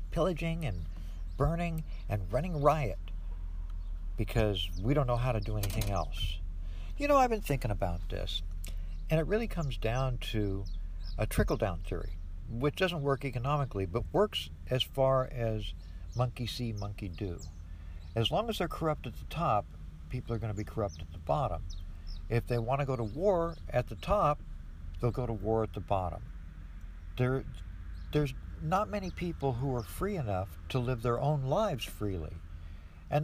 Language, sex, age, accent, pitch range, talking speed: English, male, 60-79, American, 85-135 Hz, 170 wpm